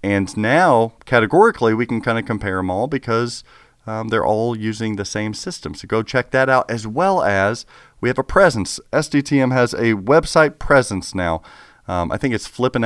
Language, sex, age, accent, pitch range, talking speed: English, male, 40-59, American, 105-130 Hz, 190 wpm